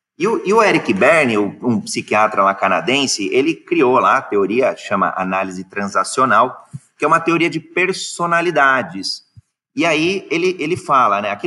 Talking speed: 160 wpm